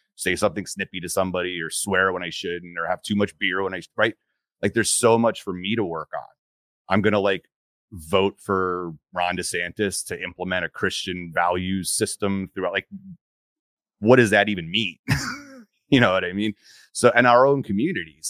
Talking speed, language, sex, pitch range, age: 190 wpm, English, male, 90-110 Hz, 30-49